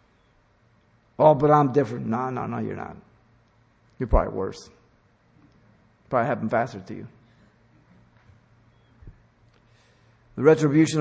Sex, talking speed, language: male, 105 wpm, English